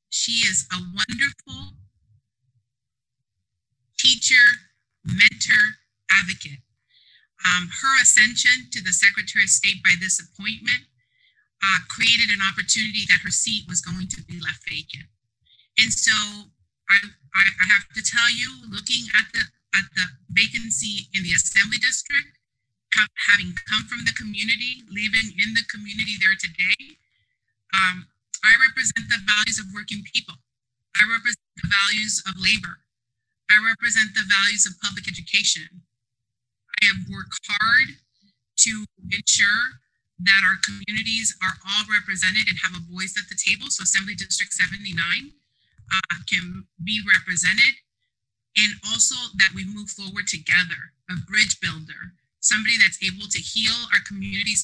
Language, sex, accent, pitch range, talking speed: English, female, American, 170-220 Hz, 135 wpm